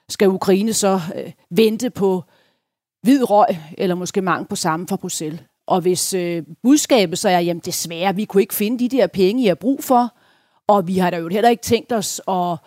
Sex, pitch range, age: female, 180-230 Hz, 40-59